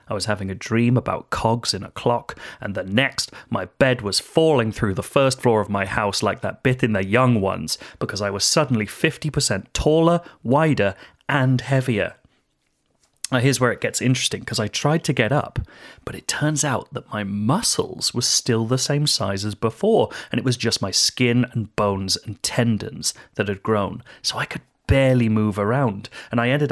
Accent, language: British, English